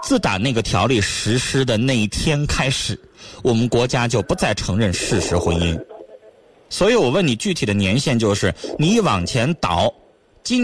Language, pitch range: Chinese, 110-185 Hz